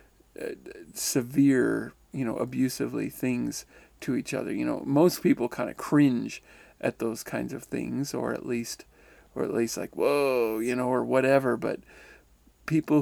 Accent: American